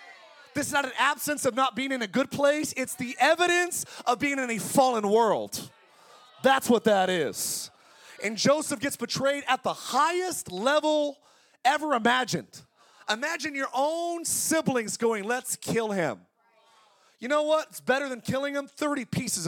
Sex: male